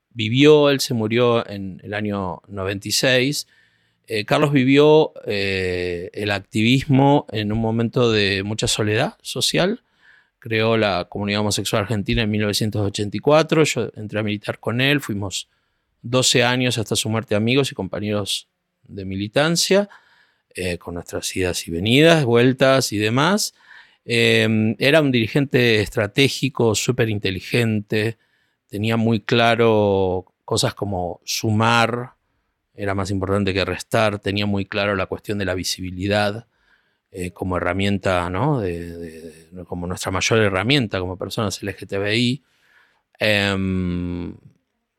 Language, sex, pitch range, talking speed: Spanish, male, 95-120 Hz, 125 wpm